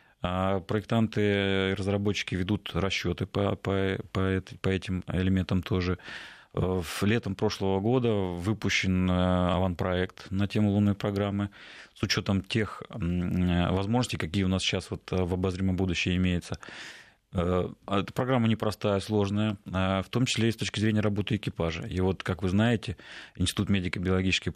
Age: 30-49